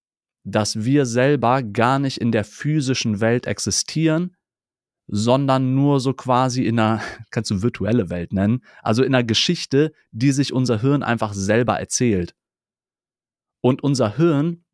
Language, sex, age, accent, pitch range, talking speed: German, male, 30-49, German, 115-145 Hz, 145 wpm